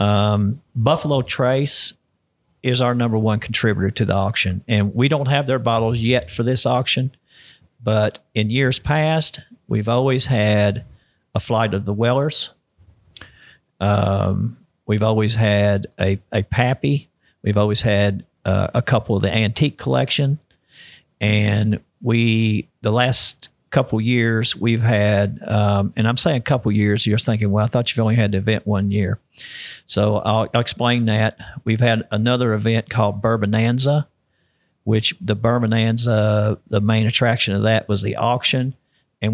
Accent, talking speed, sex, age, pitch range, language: American, 150 wpm, male, 50-69, 105-125 Hz, English